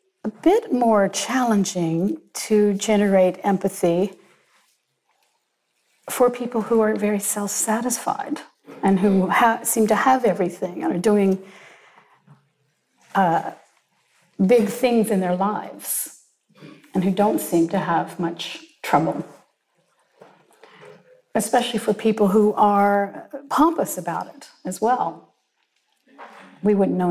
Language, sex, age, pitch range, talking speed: English, female, 50-69, 180-225 Hz, 110 wpm